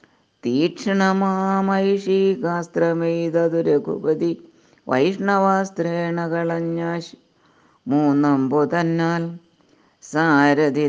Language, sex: Malayalam, female